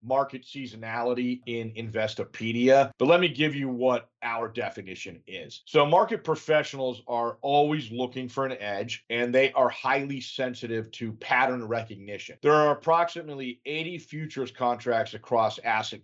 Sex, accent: male, American